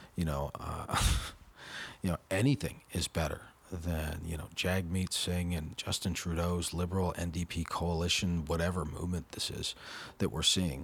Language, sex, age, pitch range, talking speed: English, male, 40-59, 85-105 Hz, 145 wpm